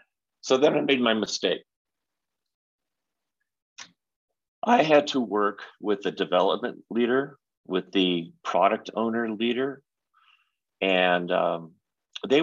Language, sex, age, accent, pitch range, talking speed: English, male, 40-59, American, 95-125 Hz, 105 wpm